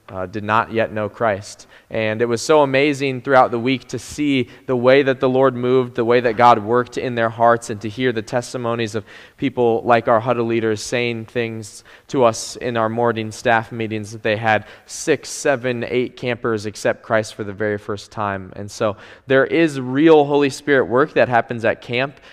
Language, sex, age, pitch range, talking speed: English, male, 20-39, 105-130 Hz, 205 wpm